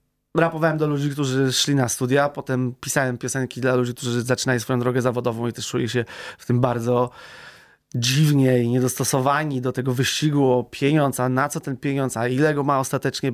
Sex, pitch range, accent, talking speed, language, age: male, 125-145 Hz, native, 190 wpm, Polish, 20-39